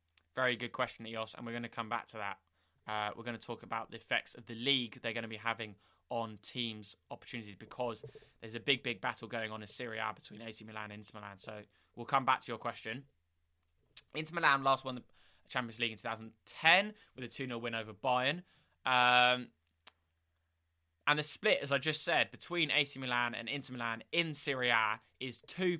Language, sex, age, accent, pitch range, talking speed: English, male, 20-39, British, 105-140 Hz, 205 wpm